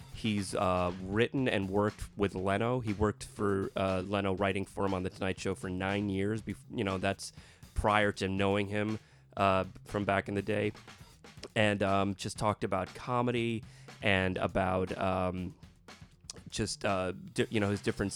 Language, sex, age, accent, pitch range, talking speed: English, male, 30-49, American, 95-120 Hz, 165 wpm